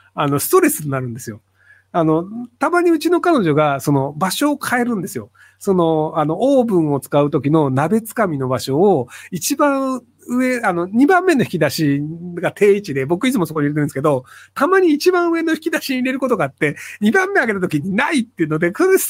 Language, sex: Japanese, male